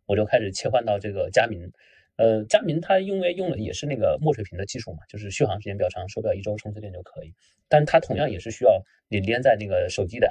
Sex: male